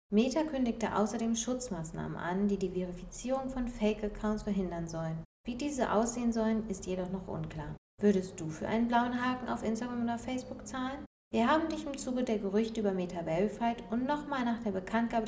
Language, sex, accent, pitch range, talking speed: German, female, German, 180-235 Hz, 180 wpm